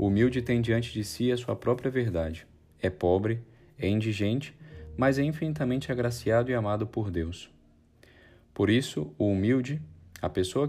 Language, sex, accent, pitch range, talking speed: Portuguese, male, Brazilian, 95-120 Hz, 155 wpm